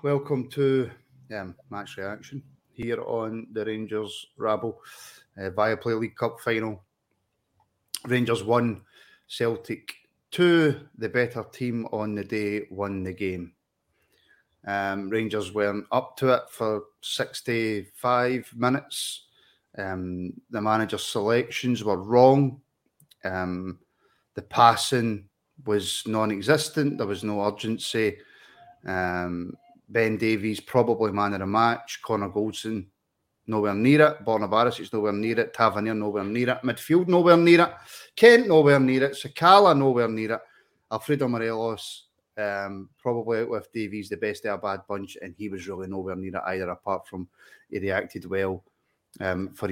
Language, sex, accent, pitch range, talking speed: English, male, British, 105-130 Hz, 140 wpm